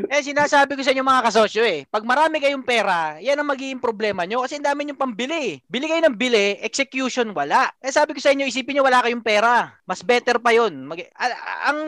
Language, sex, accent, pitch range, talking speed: Filipino, male, native, 205-265 Hz, 215 wpm